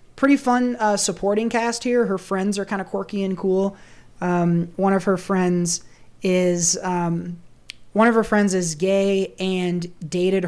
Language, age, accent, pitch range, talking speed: English, 20-39, American, 175-200 Hz, 165 wpm